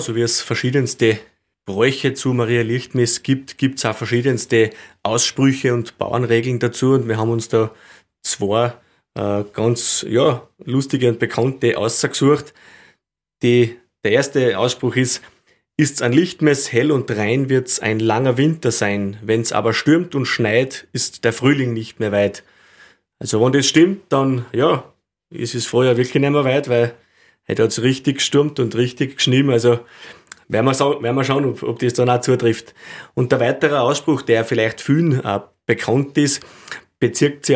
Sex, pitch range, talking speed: male, 115-135 Hz, 170 wpm